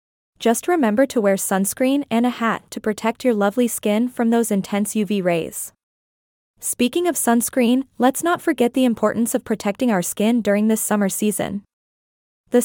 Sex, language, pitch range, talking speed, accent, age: female, English, 205-255 Hz, 165 wpm, American, 20-39